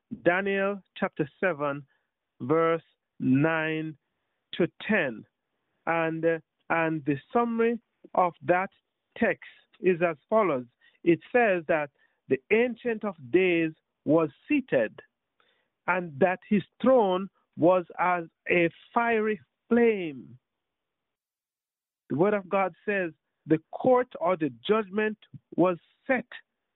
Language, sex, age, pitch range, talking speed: English, male, 50-69, 160-220 Hz, 110 wpm